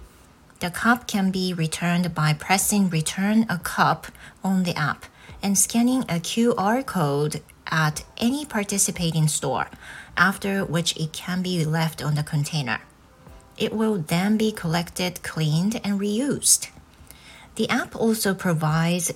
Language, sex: Japanese, female